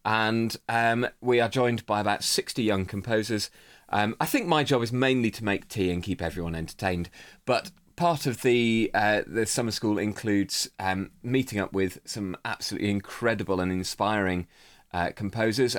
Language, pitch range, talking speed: English, 95-120 Hz, 165 wpm